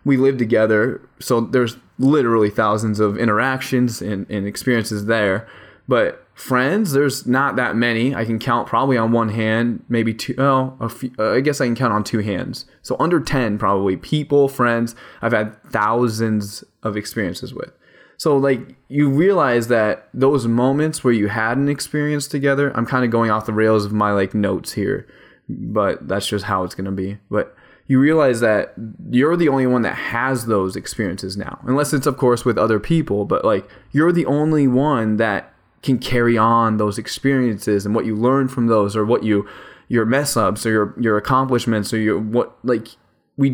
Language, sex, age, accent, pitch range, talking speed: English, male, 10-29, American, 105-130 Hz, 185 wpm